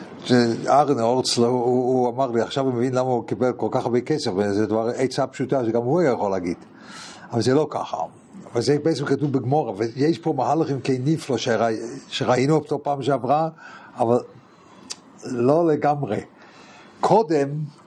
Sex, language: male, English